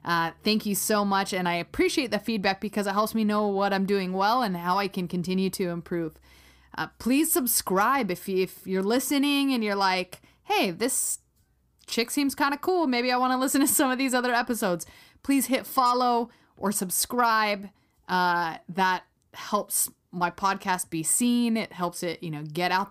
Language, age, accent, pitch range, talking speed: English, 20-39, American, 175-215 Hz, 190 wpm